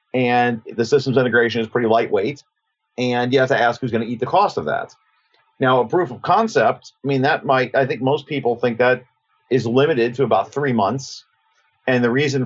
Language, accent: English, American